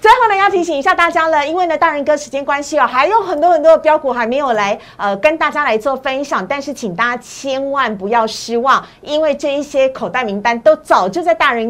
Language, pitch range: Chinese, 220-310 Hz